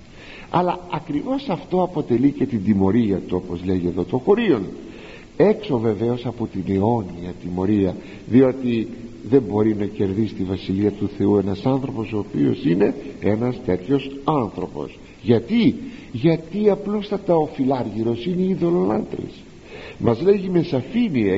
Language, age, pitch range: Greek, 50-69, 105-165 Hz